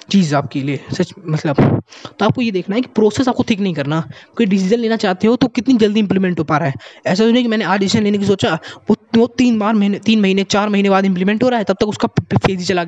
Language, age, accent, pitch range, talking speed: Hindi, 20-39, native, 175-225 Hz, 275 wpm